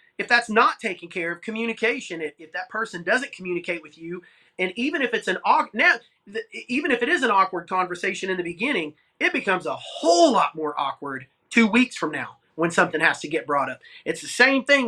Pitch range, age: 180-240 Hz, 30-49